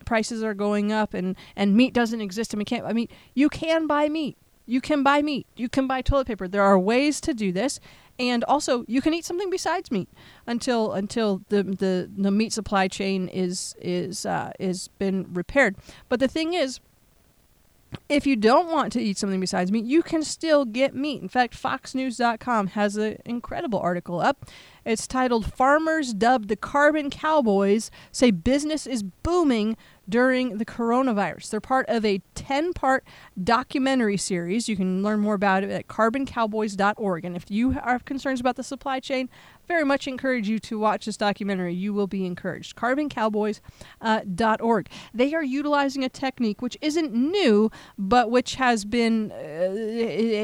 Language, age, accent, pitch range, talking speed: English, 30-49, American, 205-265 Hz, 175 wpm